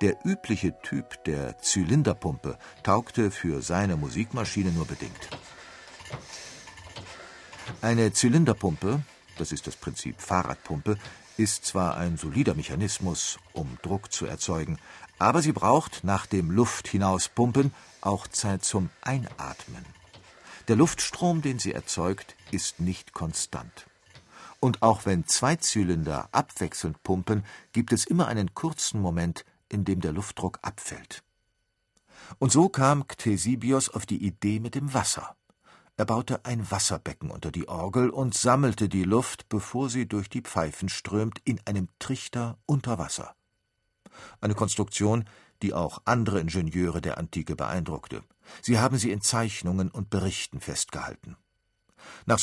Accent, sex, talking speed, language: German, male, 130 wpm, German